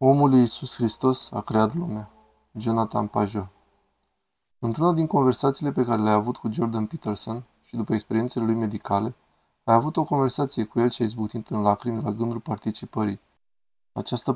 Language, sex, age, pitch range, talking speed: Romanian, male, 20-39, 110-130 Hz, 160 wpm